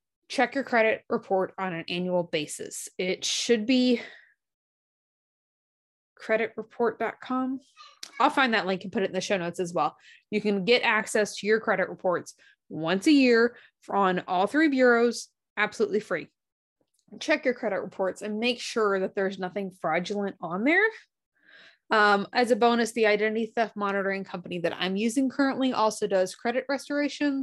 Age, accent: 20-39, American